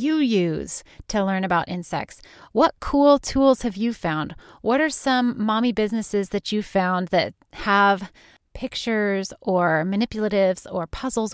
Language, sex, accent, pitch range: English, female, American, 190-235 Hz